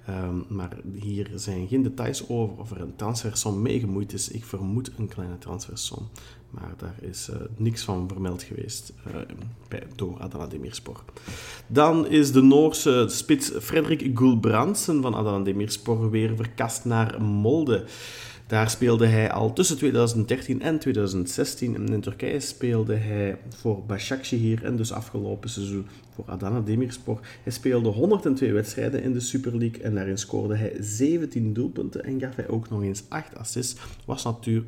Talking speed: 155 wpm